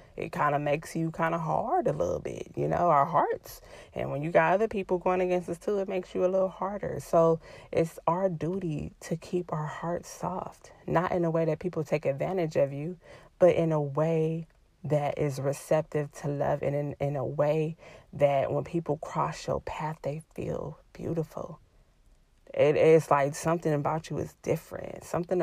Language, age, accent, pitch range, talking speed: English, 20-39, American, 150-175 Hz, 190 wpm